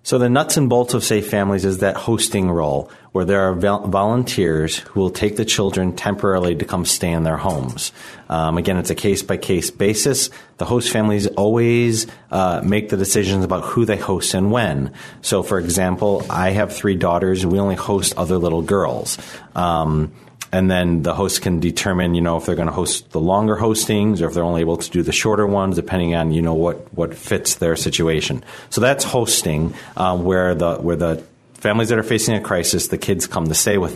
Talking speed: 210 wpm